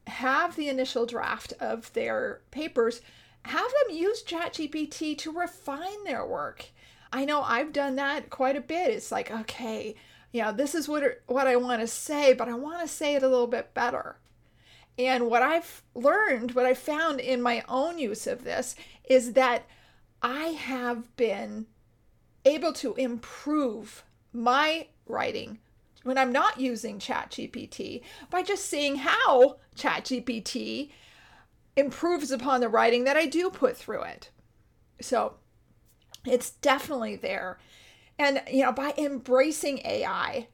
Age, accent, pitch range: 40-59, American, 245-305 Hz